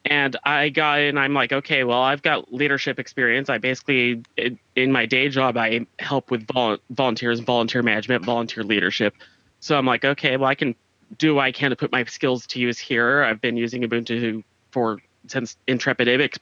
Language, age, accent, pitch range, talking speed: English, 30-49, American, 125-160 Hz, 195 wpm